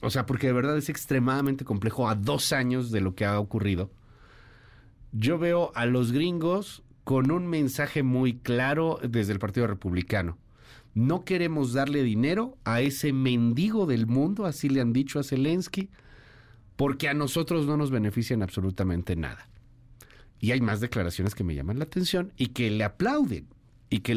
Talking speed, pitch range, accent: 170 wpm, 110-150 Hz, Mexican